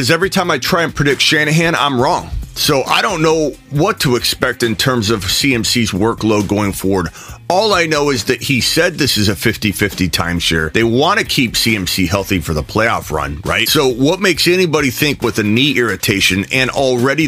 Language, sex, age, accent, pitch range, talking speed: English, male, 30-49, American, 95-130 Hz, 205 wpm